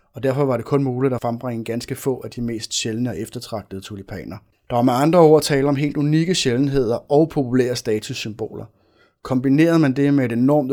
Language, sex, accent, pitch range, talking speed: Danish, male, native, 110-135 Hz, 200 wpm